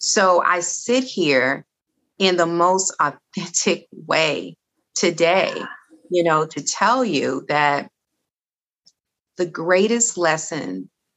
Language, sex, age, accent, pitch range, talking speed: English, female, 30-49, American, 160-185 Hz, 100 wpm